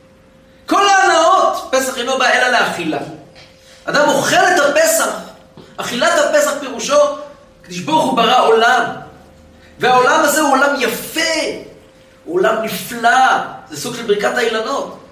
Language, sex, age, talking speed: Hebrew, male, 40-59, 125 wpm